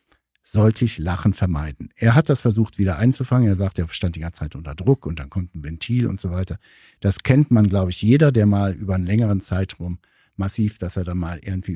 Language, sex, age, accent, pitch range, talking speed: German, male, 60-79, German, 95-130 Hz, 230 wpm